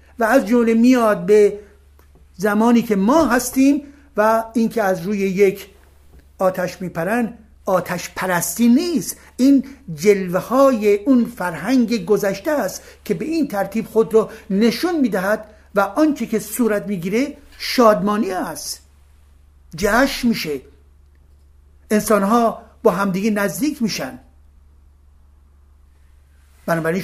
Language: Persian